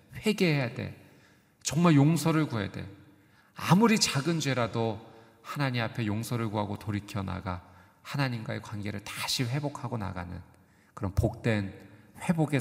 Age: 40-59